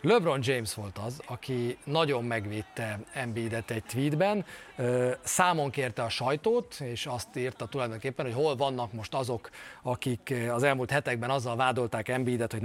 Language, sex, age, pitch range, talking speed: Hungarian, male, 30-49, 115-150 Hz, 145 wpm